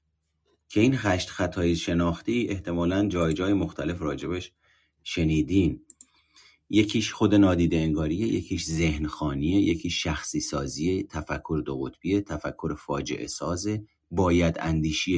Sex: male